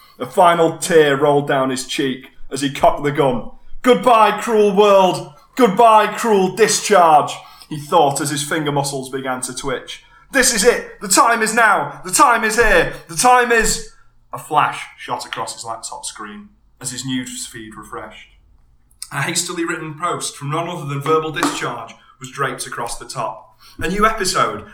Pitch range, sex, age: 130-180 Hz, male, 30-49